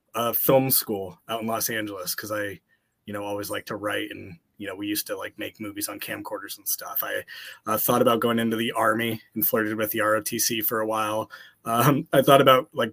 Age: 20-39